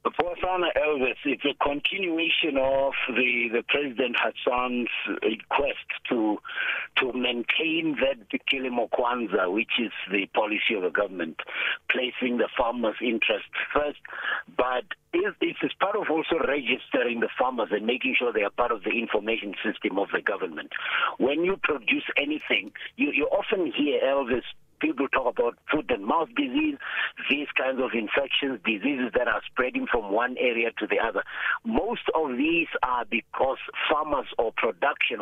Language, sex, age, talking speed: English, male, 60-79, 155 wpm